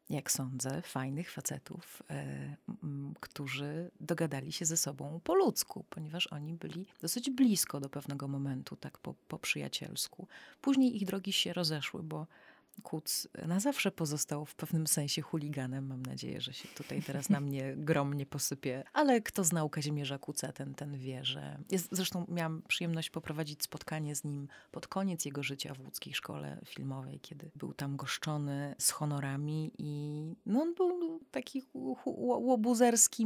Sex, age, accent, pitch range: female, 30-49, native, 140-175 Hz